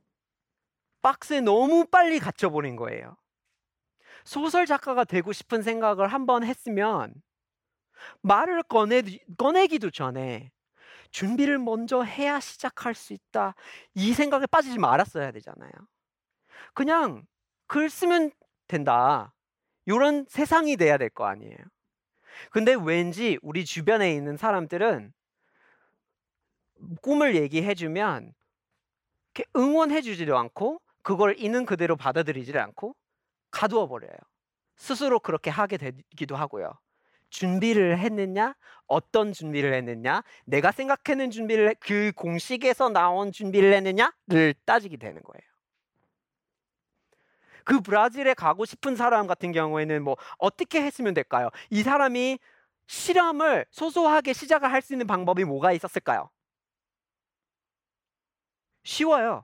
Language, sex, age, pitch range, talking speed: English, male, 40-59, 180-280 Hz, 100 wpm